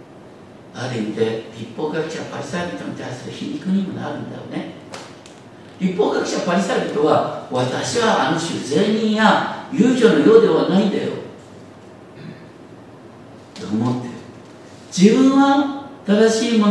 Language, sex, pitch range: Japanese, male, 200-245 Hz